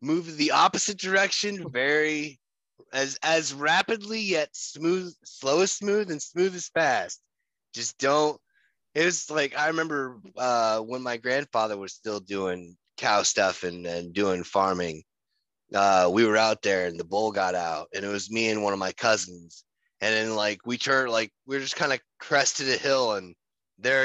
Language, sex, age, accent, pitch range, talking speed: English, male, 30-49, American, 105-165 Hz, 180 wpm